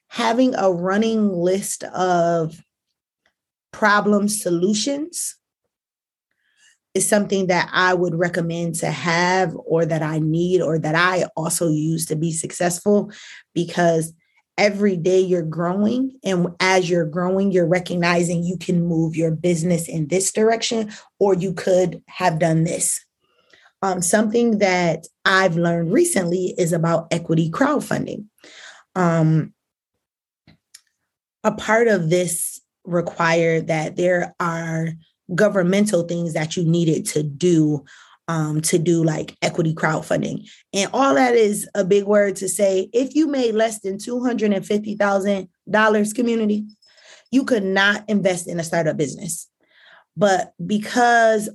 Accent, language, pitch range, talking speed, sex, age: American, English, 170-210 Hz, 135 wpm, female, 20-39